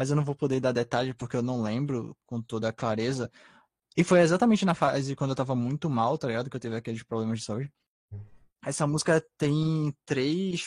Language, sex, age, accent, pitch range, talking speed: Portuguese, male, 20-39, Brazilian, 125-160 Hz, 215 wpm